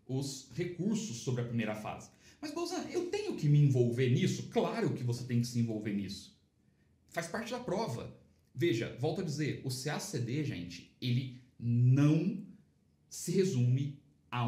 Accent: Brazilian